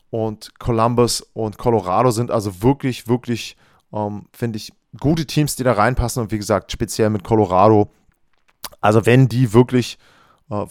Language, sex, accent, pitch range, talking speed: German, male, German, 110-145 Hz, 150 wpm